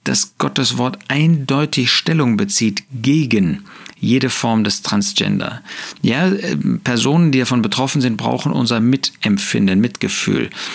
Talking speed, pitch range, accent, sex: 125 wpm, 110-160 Hz, German, male